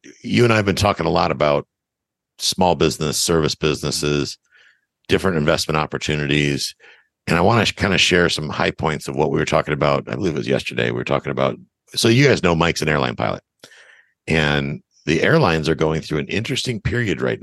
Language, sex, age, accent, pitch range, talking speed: English, male, 60-79, American, 75-90 Hz, 205 wpm